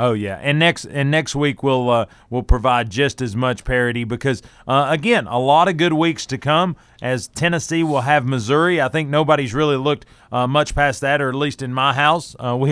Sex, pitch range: male, 120-150 Hz